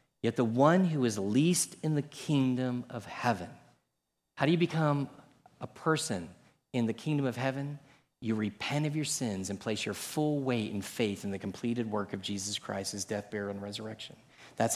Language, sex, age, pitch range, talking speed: English, male, 40-59, 105-145 Hz, 185 wpm